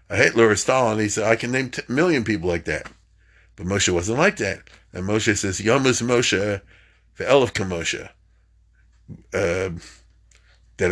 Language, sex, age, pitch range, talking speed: English, male, 50-69, 100-140 Hz, 160 wpm